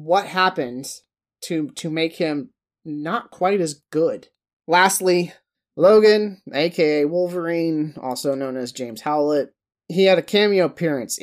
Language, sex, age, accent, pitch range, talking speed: English, male, 30-49, American, 140-185 Hz, 130 wpm